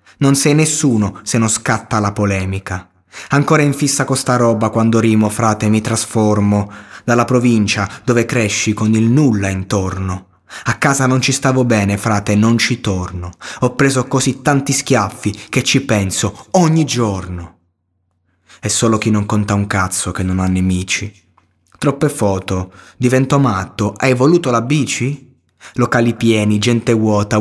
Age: 20-39